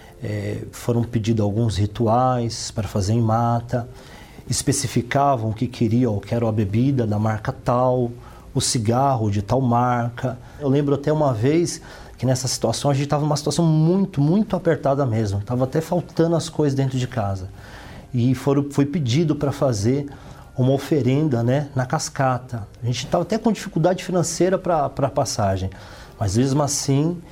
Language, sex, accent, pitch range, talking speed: Portuguese, male, Brazilian, 110-140 Hz, 165 wpm